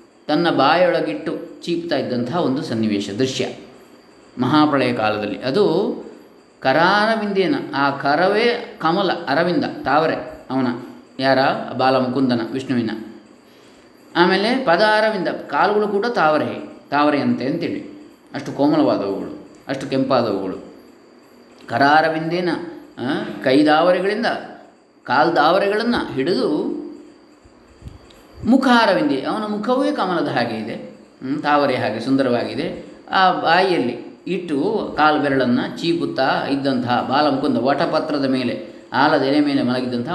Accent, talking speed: native, 90 wpm